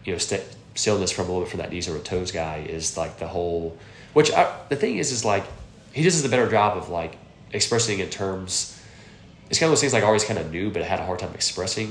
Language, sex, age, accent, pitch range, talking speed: English, male, 20-39, American, 85-105 Hz, 270 wpm